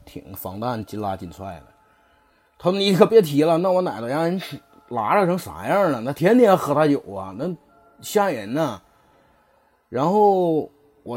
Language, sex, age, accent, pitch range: Chinese, male, 30-49, native, 120-195 Hz